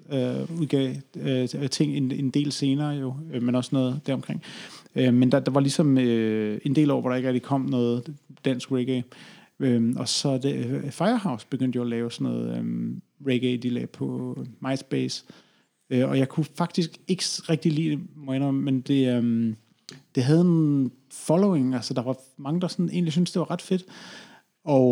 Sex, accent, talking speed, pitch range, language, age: male, native, 195 wpm, 130-165 Hz, Danish, 30-49